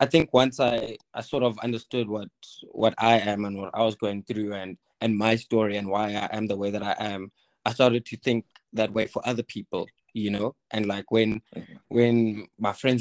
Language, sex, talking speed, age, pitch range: English, male, 220 wpm, 20-39, 105-120 Hz